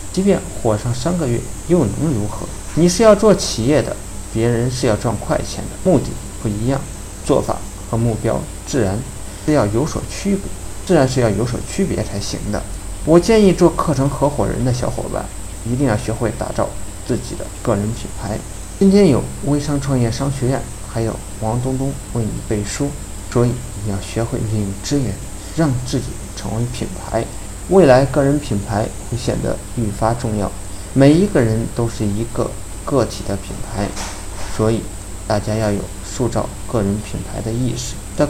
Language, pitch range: Chinese, 100-130 Hz